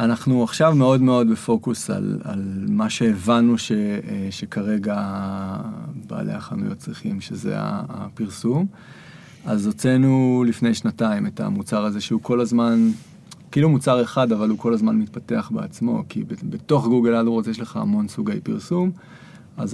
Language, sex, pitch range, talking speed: Hebrew, male, 115-190 Hz, 135 wpm